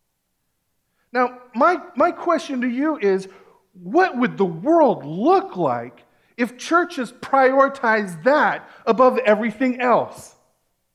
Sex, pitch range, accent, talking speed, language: male, 195-265 Hz, American, 110 wpm, English